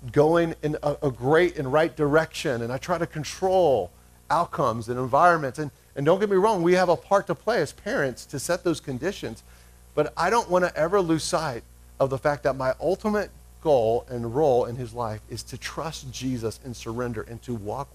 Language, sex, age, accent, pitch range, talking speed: English, male, 40-59, American, 95-155 Hz, 210 wpm